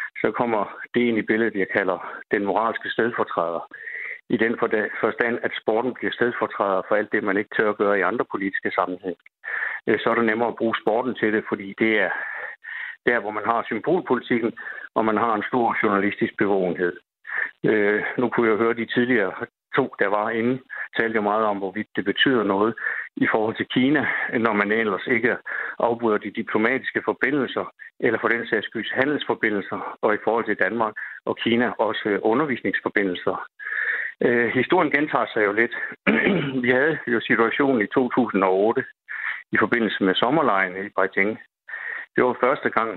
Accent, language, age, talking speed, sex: native, Danish, 60-79, 170 wpm, male